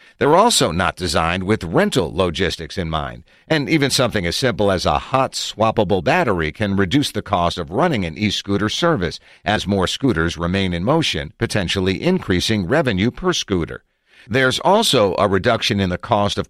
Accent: American